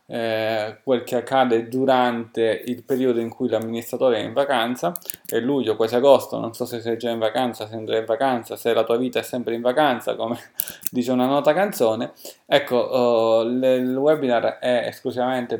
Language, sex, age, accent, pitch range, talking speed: Italian, male, 20-39, native, 115-130 Hz, 175 wpm